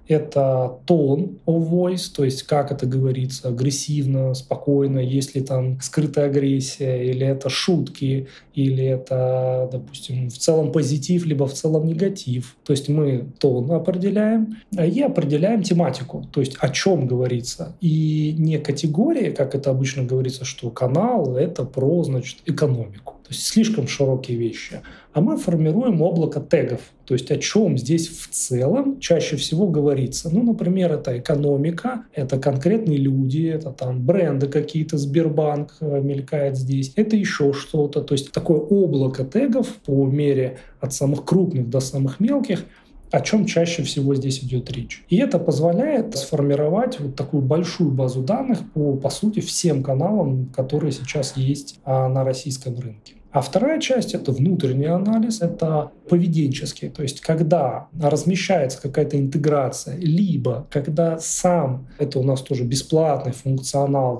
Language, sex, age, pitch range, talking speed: Russian, male, 20-39, 135-170 Hz, 145 wpm